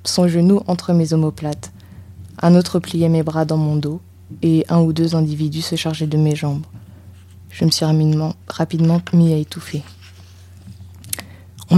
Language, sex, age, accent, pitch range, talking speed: French, female, 20-39, French, 100-165 Hz, 160 wpm